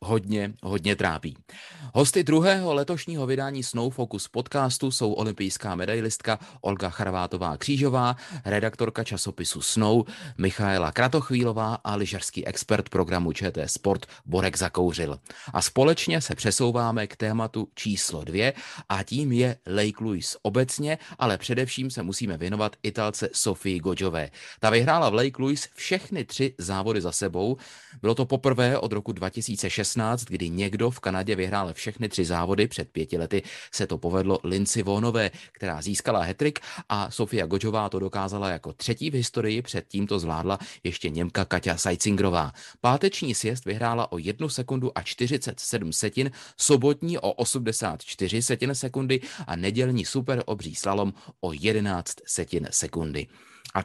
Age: 30-49